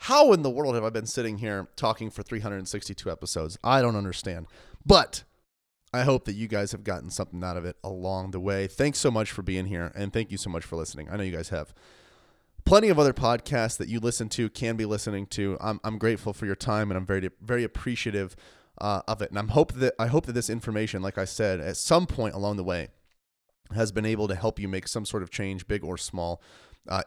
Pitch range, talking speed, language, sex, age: 100-135 Hz, 250 wpm, English, male, 30-49